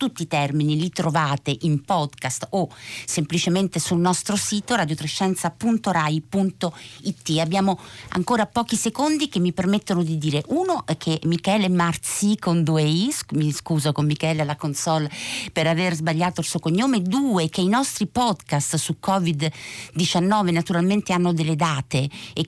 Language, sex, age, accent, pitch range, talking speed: Italian, female, 50-69, native, 155-185 Hz, 145 wpm